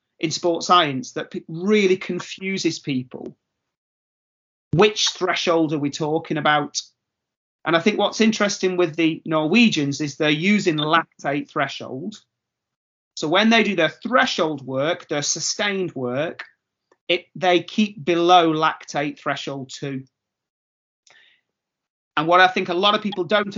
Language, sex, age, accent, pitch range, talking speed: English, male, 30-49, British, 140-180 Hz, 130 wpm